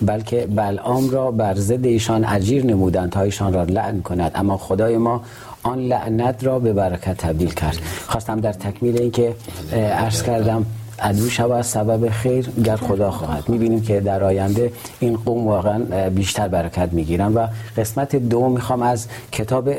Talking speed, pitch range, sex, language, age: 160 wpm, 100-120 Hz, male, Persian, 40-59